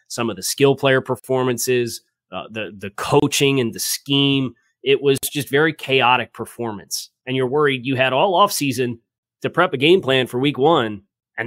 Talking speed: 185 wpm